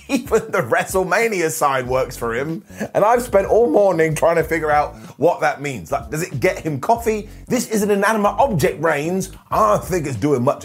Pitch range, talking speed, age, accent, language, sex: 150-210 Hz, 210 wpm, 30-49, British, English, male